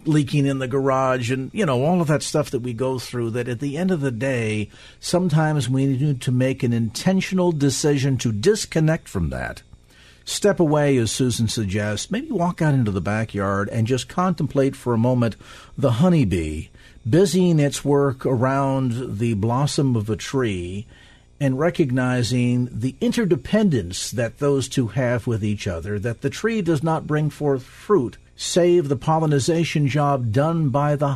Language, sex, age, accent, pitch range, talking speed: English, male, 50-69, American, 120-170 Hz, 170 wpm